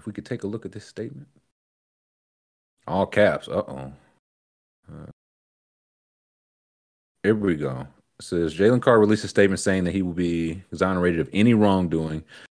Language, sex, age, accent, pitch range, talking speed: English, male, 30-49, American, 85-115 Hz, 155 wpm